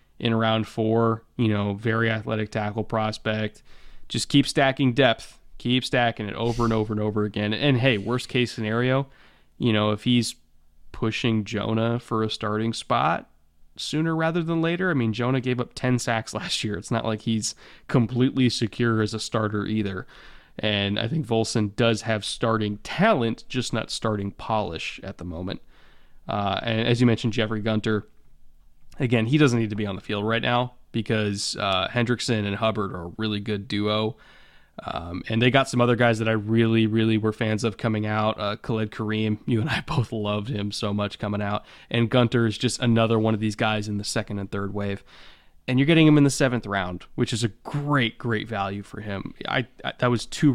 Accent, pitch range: American, 105-120 Hz